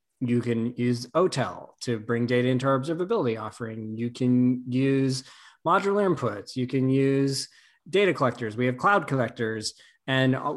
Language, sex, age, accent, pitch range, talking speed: English, male, 20-39, American, 115-135 Hz, 150 wpm